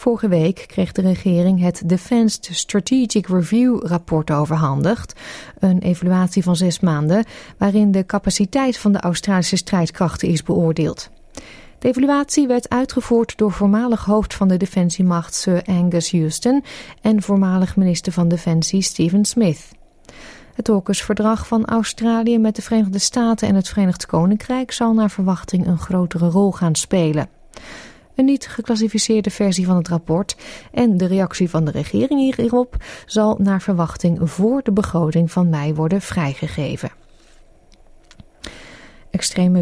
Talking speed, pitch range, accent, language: 135 wpm, 180-225 Hz, Dutch, Dutch